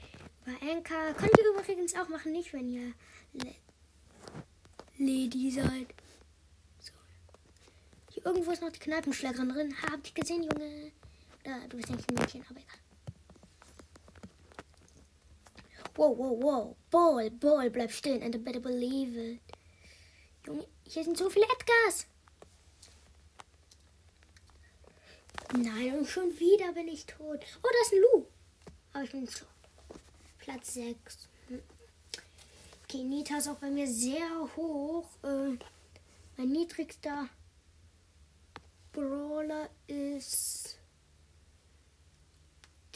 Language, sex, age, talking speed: German, female, 10-29, 115 wpm